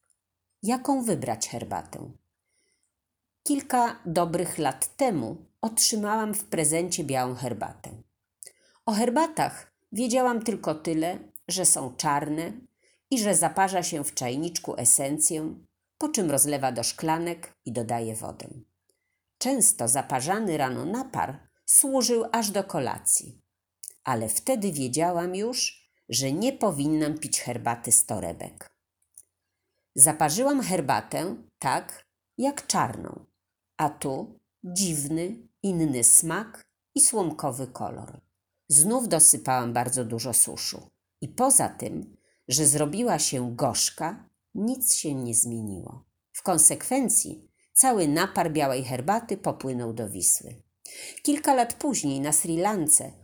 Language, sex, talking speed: Polish, female, 110 wpm